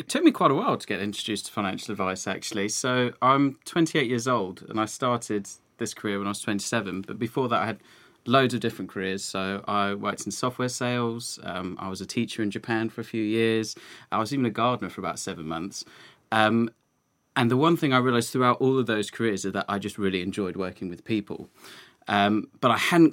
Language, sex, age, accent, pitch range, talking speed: English, male, 20-39, British, 100-125 Hz, 225 wpm